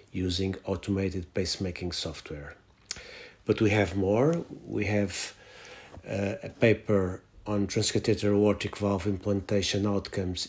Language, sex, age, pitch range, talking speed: Portuguese, male, 50-69, 95-110 Hz, 110 wpm